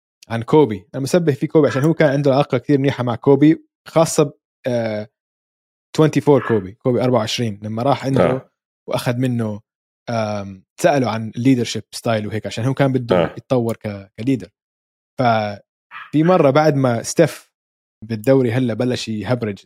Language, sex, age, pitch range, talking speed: Arabic, male, 20-39, 110-145 Hz, 140 wpm